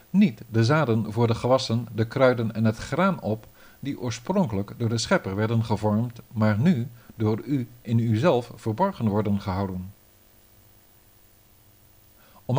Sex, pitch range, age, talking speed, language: male, 105-140 Hz, 50-69, 140 wpm, Dutch